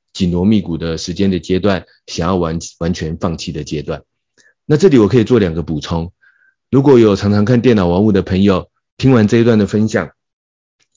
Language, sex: Chinese, male